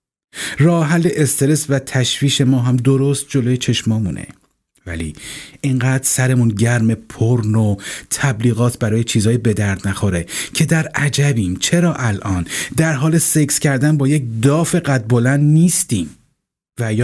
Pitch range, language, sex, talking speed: 110-140 Hz, Persian, male, 130 wpm